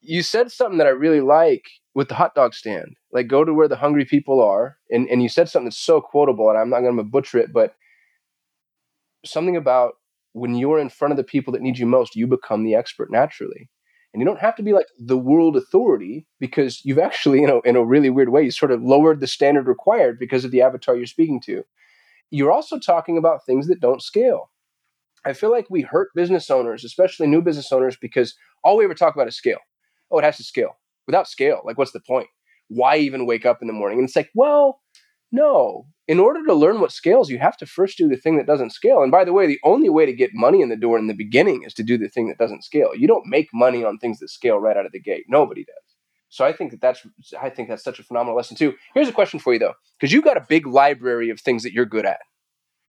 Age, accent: 20-39, American